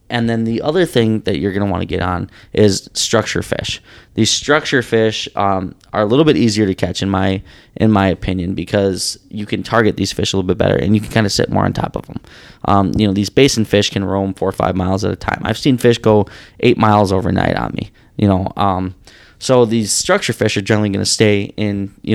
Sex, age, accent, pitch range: male, 20-39, American, 100-115 Hz